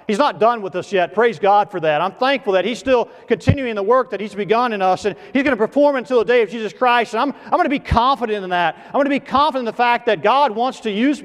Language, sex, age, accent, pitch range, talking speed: English, male, 40-59, American, 160-230 Hz, 300 wpm